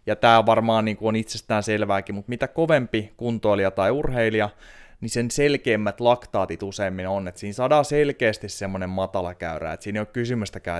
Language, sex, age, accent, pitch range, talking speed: Finnish, male, 20-39, native, 90-110 Hz, 185 wpm